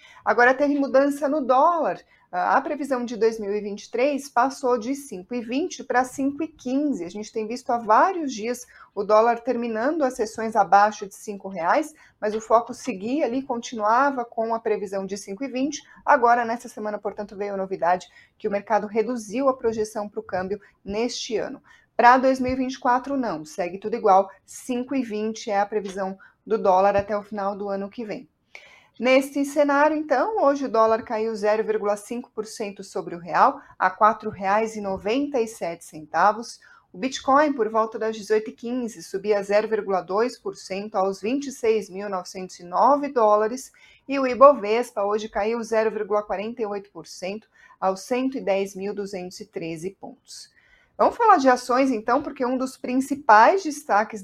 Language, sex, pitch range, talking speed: Portuguese, female, 205-260 Hz, 135 wpm